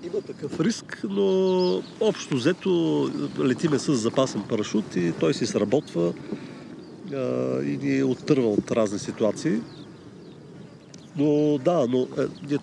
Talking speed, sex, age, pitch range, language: 120 wpm, male, 40-59, 115-150 Hz, Bulgarian